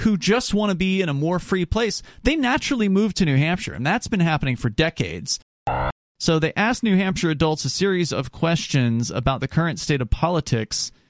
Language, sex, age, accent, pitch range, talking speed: English, male, 30-49, American, 135-185 Hz, 205 wpm